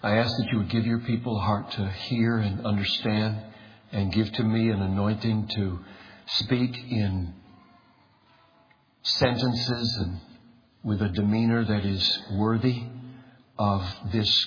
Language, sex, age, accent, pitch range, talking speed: English, male, 60-79, American, 100-120 Hz, 135 wpm